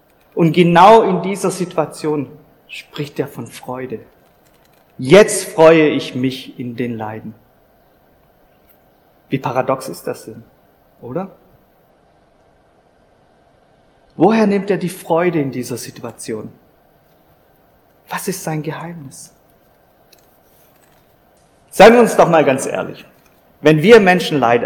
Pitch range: 125-160 Hz